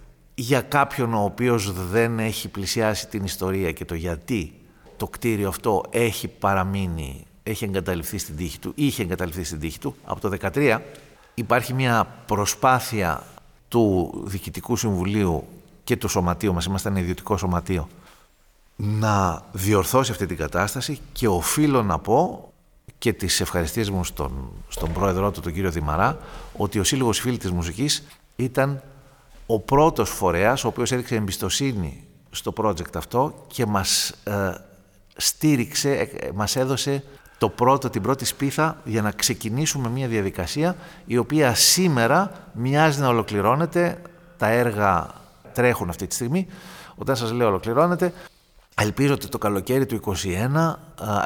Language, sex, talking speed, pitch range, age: Greek, male, 140 wpm, 95-135 Hz, 50-69